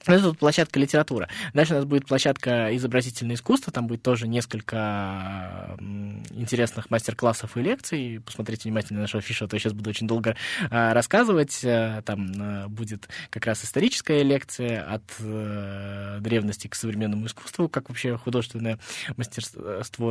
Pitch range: 110-130 Hz